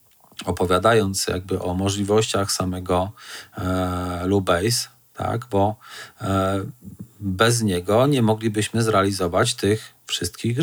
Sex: male